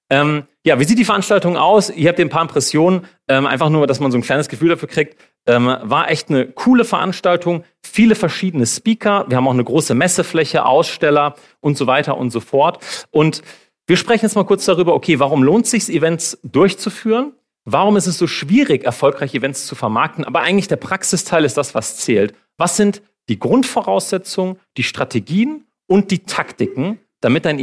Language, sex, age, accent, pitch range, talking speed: German, male, 40-59, German, 140-200 Hz, 190 wpm